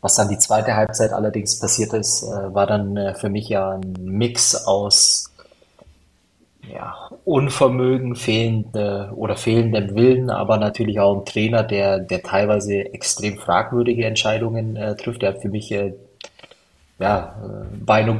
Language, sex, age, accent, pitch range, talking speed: German, male, 20-39, German, 100-115 Hz, 140 wpm